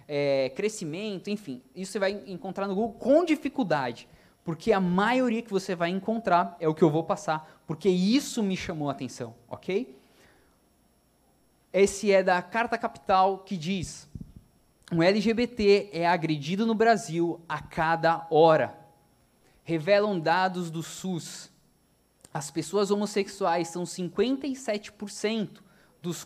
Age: 20-39